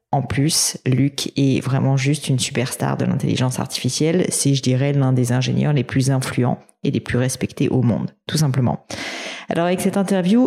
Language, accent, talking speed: French, French, 185 wpm